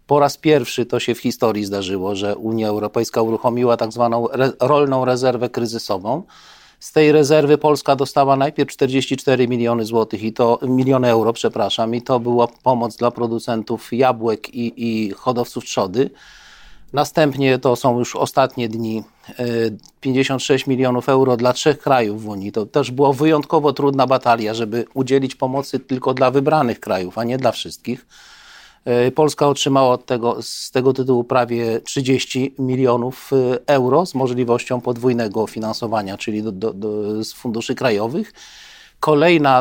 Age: 40-59